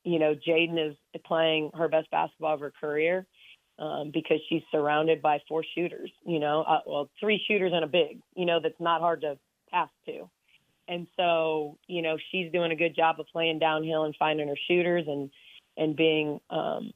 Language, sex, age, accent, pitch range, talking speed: English, female, 30-49, American, 150-170 Hz, 195 wpm